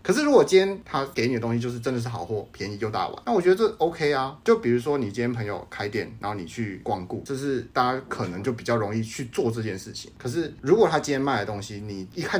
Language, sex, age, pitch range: Chinese, male, 30-49, 105-130 Hz